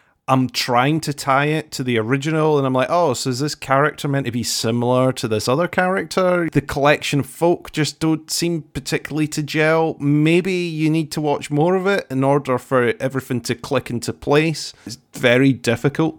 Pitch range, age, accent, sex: 120-150 Hz, 30-49, British, male